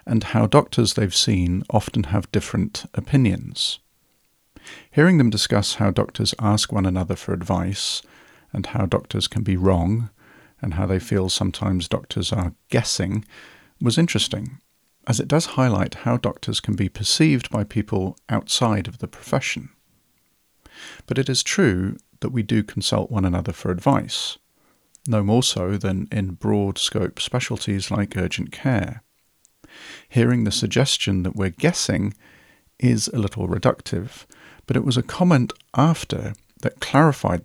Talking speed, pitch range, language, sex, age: 145 wpm, 100-125 Hz, English, male, 40-59